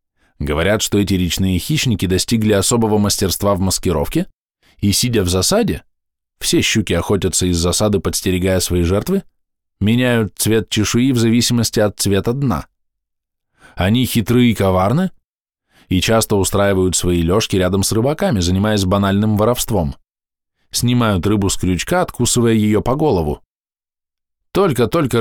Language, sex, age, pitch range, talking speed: Russian, male, 20-39, 95-120 Hz, 130 wpm